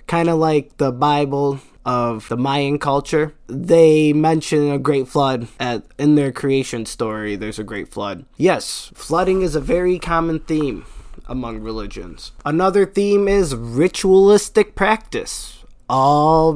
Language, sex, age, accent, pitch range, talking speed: English, male, 20-39, American, 120-160 Hz, 140 wpm